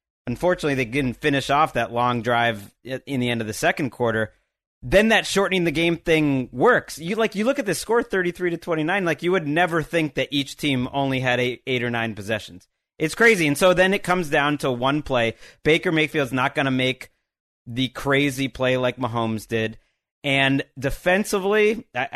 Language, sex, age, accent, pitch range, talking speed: English, male, 30-49, American, 130-170 Hz, 195 wpm